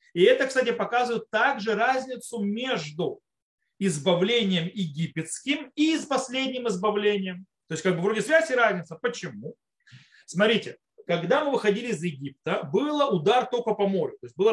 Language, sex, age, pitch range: Russian, male, 30-49, 180-260 Hz